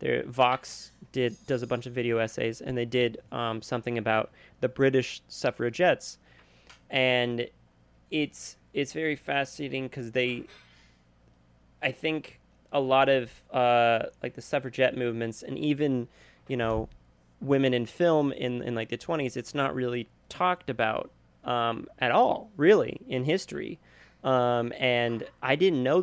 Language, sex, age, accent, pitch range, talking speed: English, male, 20-39, American, 115-135 Hz, 145 wpm